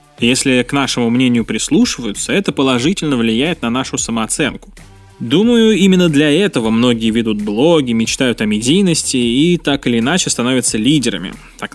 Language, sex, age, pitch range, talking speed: Russian, male, 20-39, 115-155 Hz, 145 wpm